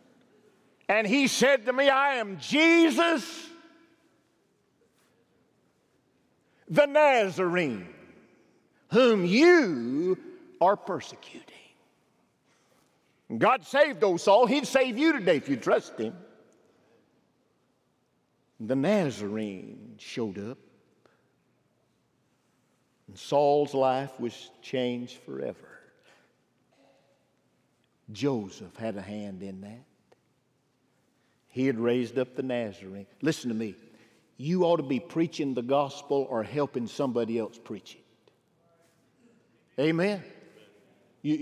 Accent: American